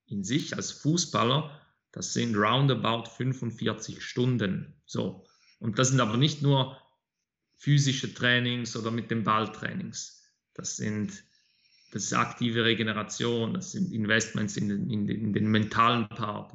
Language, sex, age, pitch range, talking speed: German, male, 30-49, 110-125 Hz, 140 wpm